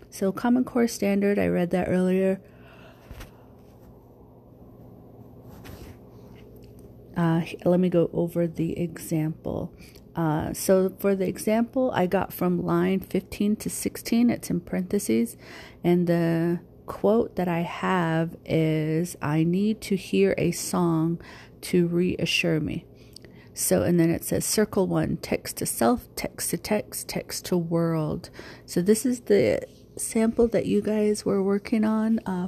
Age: 40-59